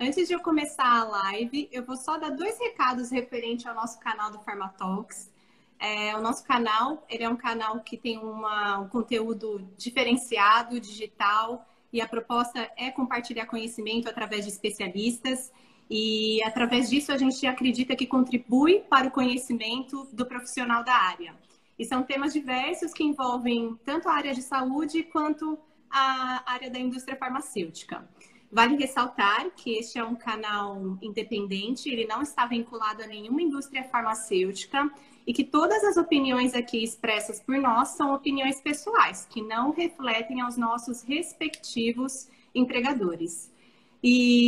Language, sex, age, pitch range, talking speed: Portuguese, female, 20-39, 220-270 Hz, 150 wpm